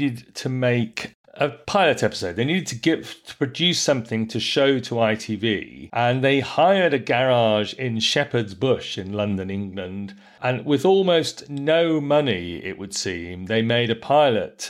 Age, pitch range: 40-59, 110-135 Hz